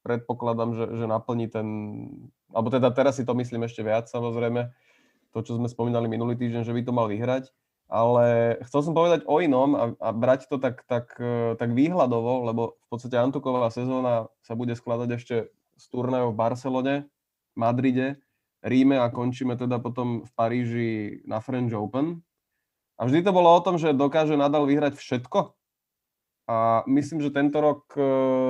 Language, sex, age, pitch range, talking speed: Slovak, male, 20-39, 115-140 Hz, 165 wpm